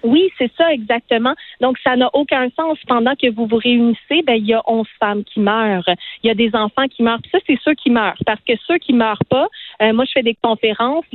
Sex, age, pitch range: female, 40-59, 220-270 Hz